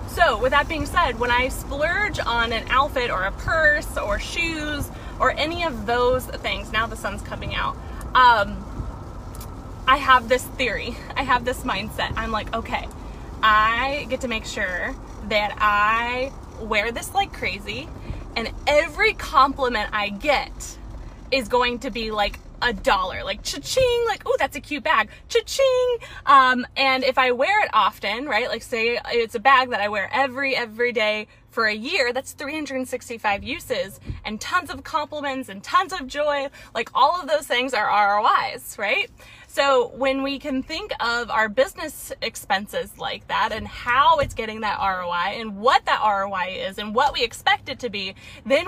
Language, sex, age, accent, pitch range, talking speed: English, female, 20-39, American, 230-295 Hz, 175 wpm